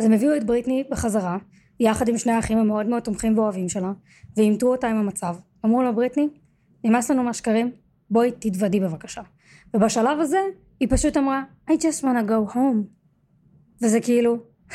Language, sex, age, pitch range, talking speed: Hebrew, female, 20-39, 205-250 Hz, 165 wpm